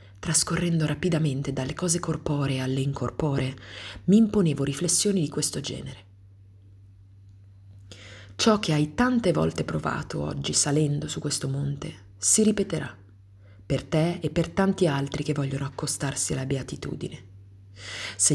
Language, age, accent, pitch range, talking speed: Italian, 30-49, native, 100-160 Hz, 125 wpm